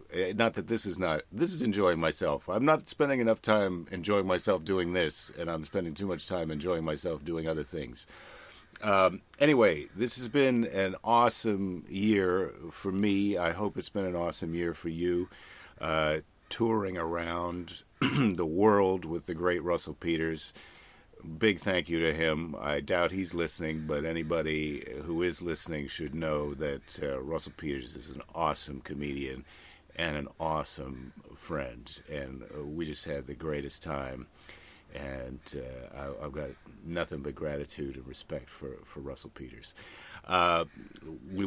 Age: 50-69